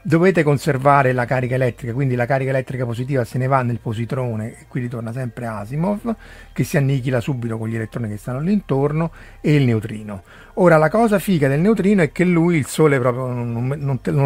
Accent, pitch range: native, 125-160 Hz